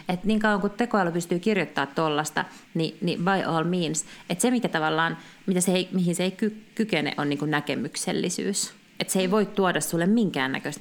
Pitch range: 165-215 Hz